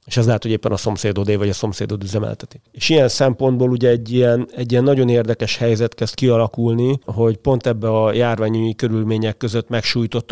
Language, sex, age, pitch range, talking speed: Hungarian, male, 40-59, 110-125 Hz, 190 wpm